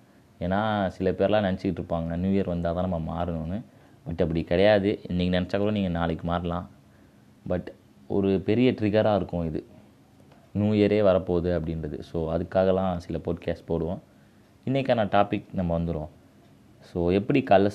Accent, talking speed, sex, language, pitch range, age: native, 145 wpm, male, Tamil, 85-105 Hz, 20-39